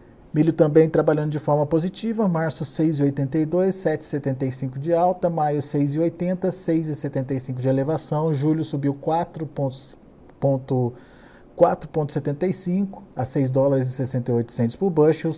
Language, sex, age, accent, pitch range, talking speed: Portuguese, male, 50-69, Brazilian, 130-170 Hz, 100 wpm